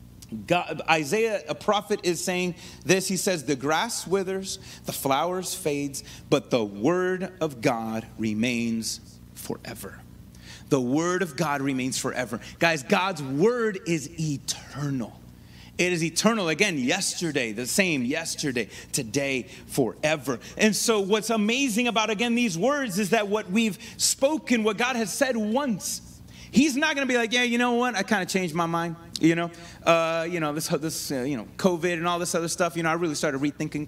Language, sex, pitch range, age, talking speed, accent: English, male, 150-205 Hz, 30-49, 175 wpm, American